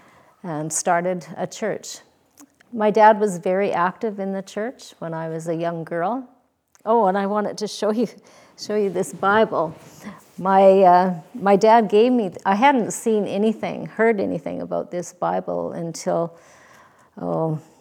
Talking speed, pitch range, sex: 155 wpm, 170-210 Hz, female